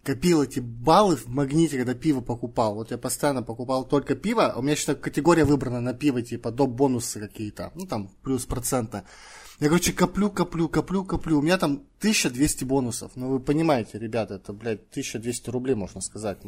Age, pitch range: 20-39, 120-155 Hz